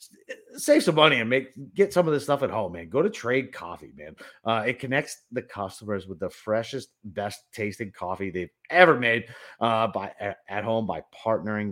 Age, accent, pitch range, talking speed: 30-49, American, 100-135 Hz, 195 wpm